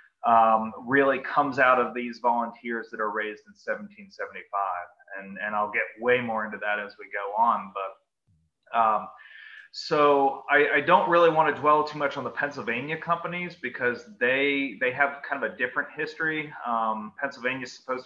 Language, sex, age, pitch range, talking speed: English, male, 20-39, 115-145 Hz, 175 wpm